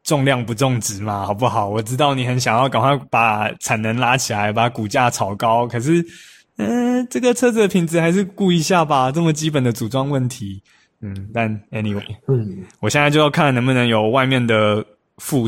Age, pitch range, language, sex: 20-39, 115-160 Hz, Chinese, male